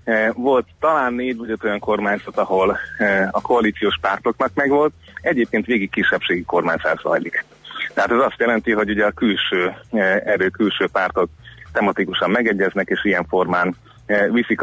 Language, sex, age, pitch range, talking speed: Hungarian, male, 30-49, 100-115 Hz, 130 wpm